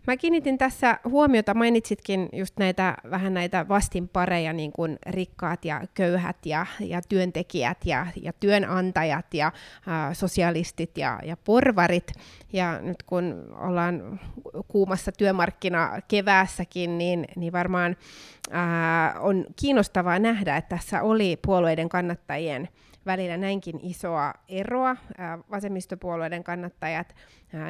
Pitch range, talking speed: 165-190 Hz, 115 wpm